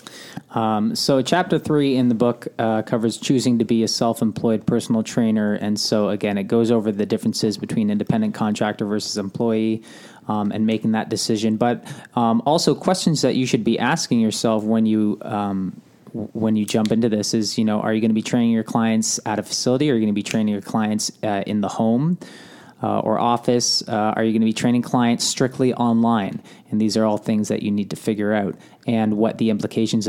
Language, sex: English, male